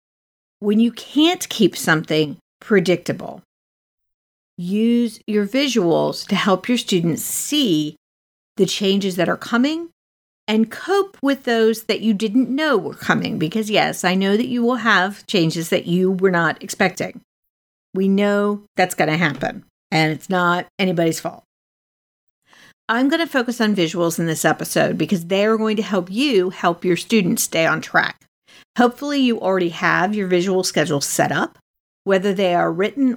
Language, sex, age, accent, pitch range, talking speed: English, female, 50-69, American, 170-230 Hz, 160 wpm